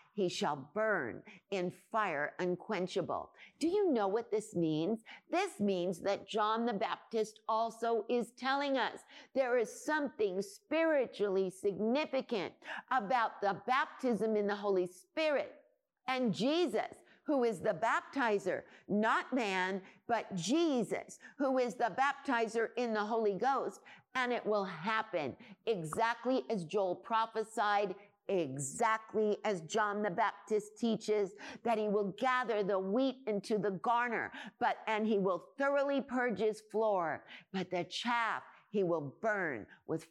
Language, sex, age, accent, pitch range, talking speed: English, female, 50-69, American, 190-250 Hz, 135 wpm